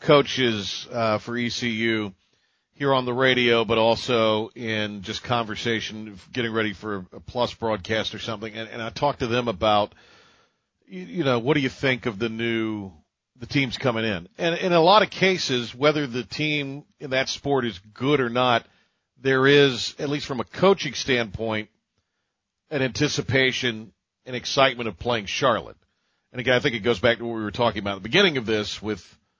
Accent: American